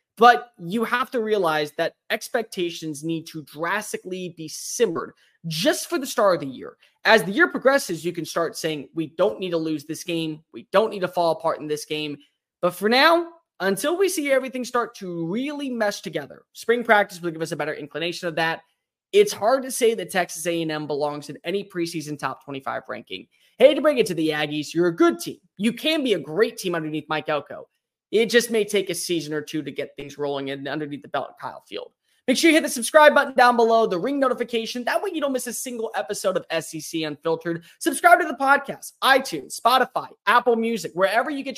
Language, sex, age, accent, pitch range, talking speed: English, male, 20-39, American, 165-245 Hz, 220 wpm